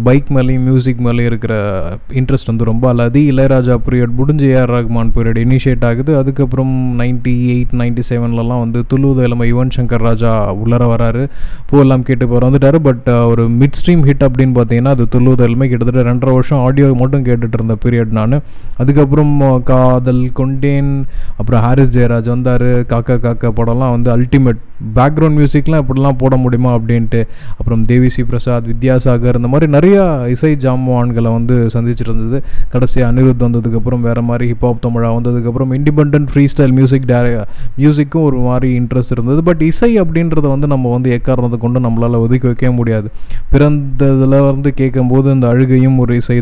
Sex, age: male, 20-39